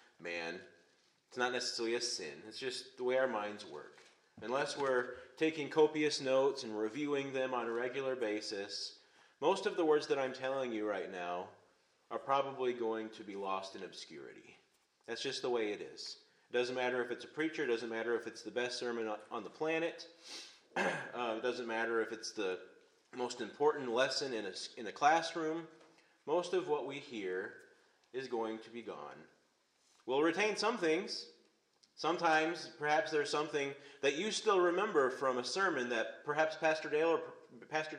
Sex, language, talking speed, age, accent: male, English, 175 wpm, 30-49, American